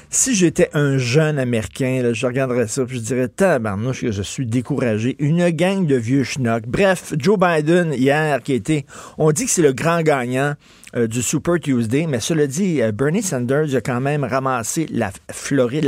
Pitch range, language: 125-155 Hz, French